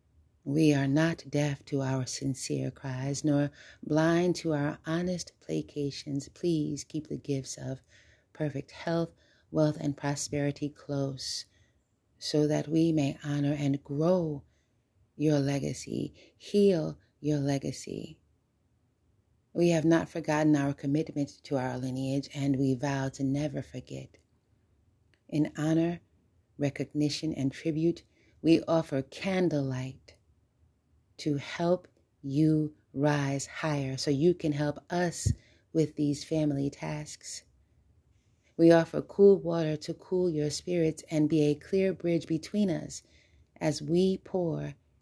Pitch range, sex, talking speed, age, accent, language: 130-155 Hz, female, 125 wpm, 30-49, American, English